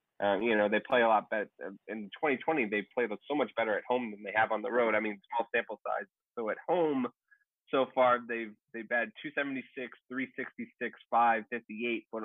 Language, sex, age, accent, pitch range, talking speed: English, male, 30-49, American, 100-120 Hz, 195 wpm